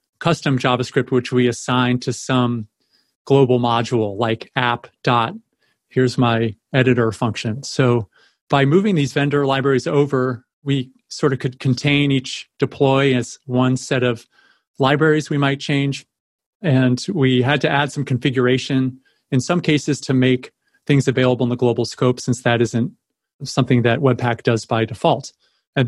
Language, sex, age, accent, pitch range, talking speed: English, male, 40-59, American, 120-140 Hz, 155 wpm